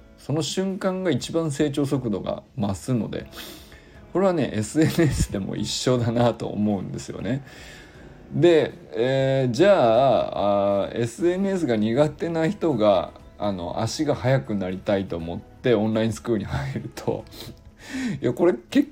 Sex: male